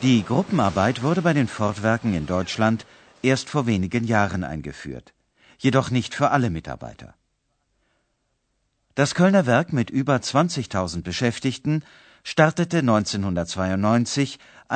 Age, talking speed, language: 50-69, 110 wpm, Urdu